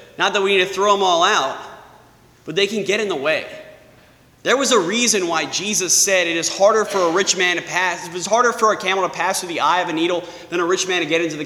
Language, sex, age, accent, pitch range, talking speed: English, male, 20-39, American, 155-210 Hz, 285 wpm